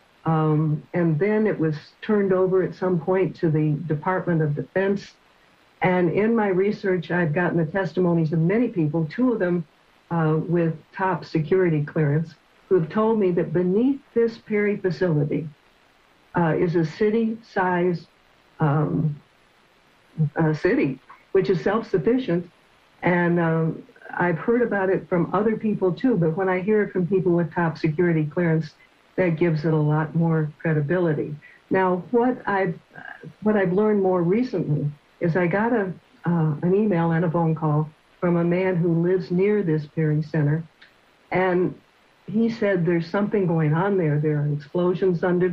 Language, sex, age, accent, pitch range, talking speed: English, female, 60-79, American, 160-190 Hz, 160 wpm